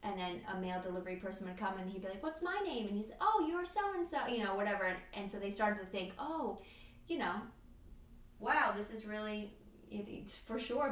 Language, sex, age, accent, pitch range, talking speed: English, female, 20-39, American, 200-235 Hz, 230 wpm